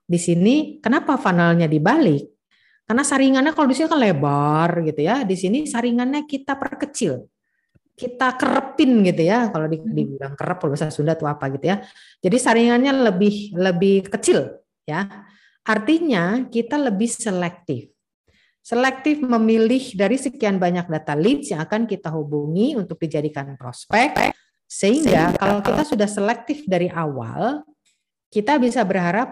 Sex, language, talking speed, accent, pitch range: female, English, 135 wpm, Indonesian, 165-245 Hz